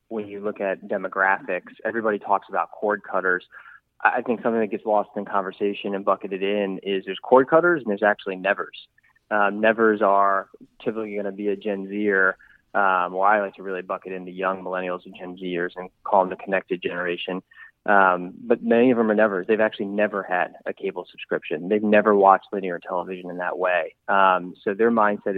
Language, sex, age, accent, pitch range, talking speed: English, male, 20-39, American, 95-110 Hz, 200 wpm